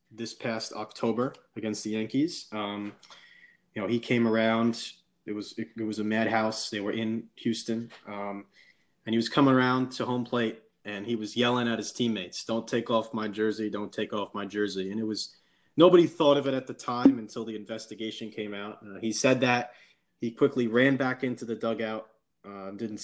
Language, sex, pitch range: English, male, 105-120 Hz